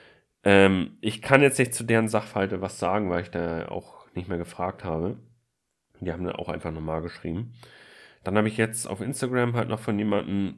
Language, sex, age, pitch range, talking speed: German, male, 40-59, 95-120 Hz, 195 wpm